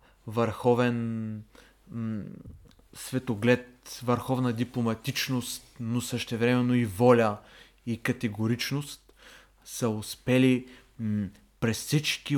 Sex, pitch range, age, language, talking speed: male, 110-130 Hz, 30-49, Bulgarian, 80 wpm